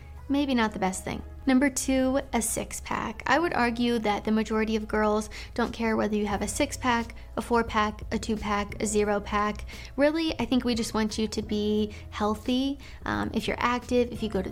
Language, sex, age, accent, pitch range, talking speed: English, female, 20-39, American, 215-250 Hz, 220 wpm